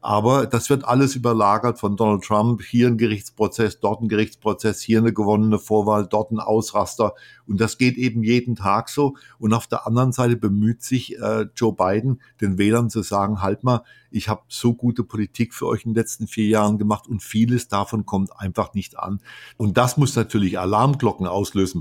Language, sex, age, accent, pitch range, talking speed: German, male, 50-69, German, 100-120 Hz, 195 wpm